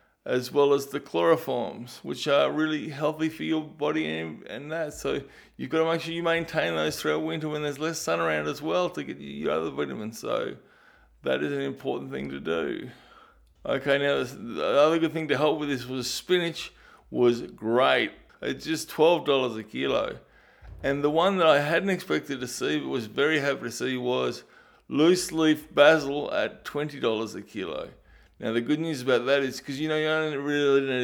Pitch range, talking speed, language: 125-155 Hz, 195 wpm, English